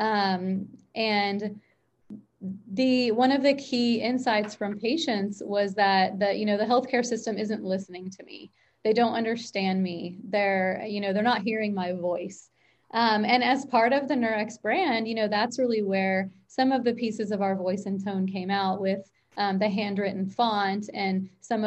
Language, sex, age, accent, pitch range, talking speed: English, female, 30-49, American, 195-235 Hz, 180 wpm